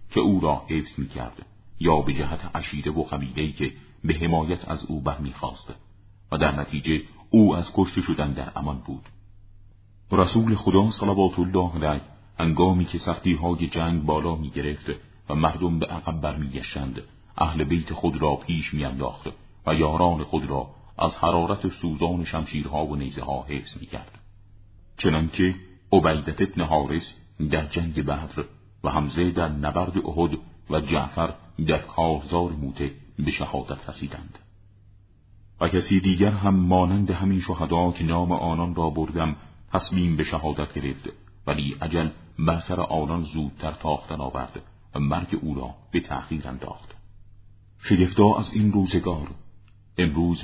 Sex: male